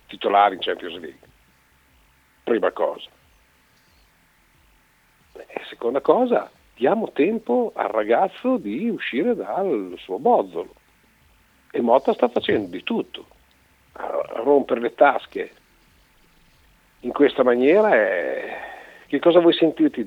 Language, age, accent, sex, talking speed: Italian, 50-69, native, male, 105 wpm